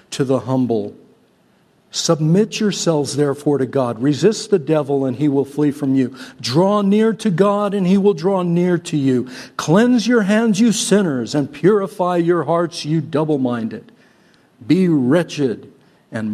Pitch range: 130-185 Hz